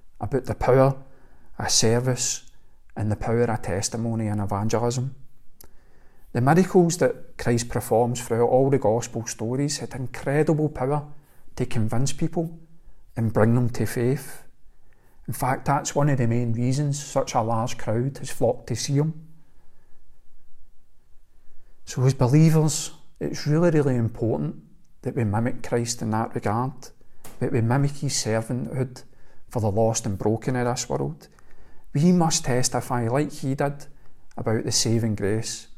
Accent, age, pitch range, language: British, 40-59, 110-135 Hz, English